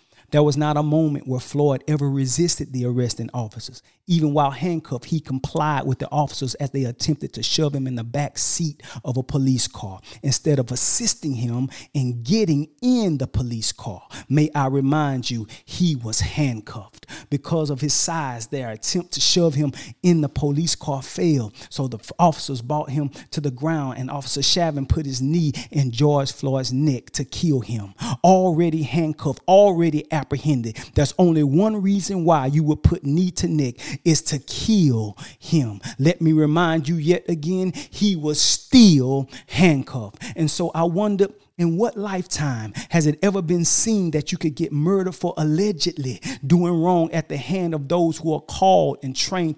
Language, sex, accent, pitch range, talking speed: English, male, American, 135-175 Hz, 175 wpm